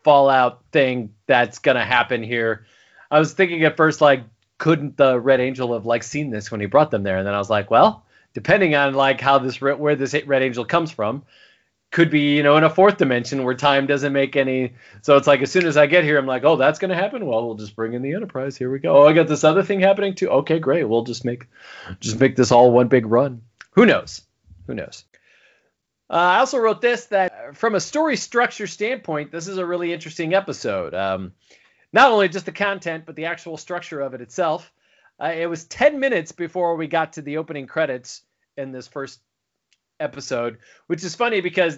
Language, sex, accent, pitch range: English, male, American, 130-175 Hz